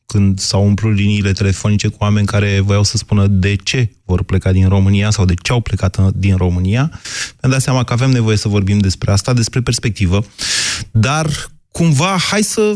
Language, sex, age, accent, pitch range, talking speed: Romanian, male, 30-49, native, 105-150 Hz, 190 wpm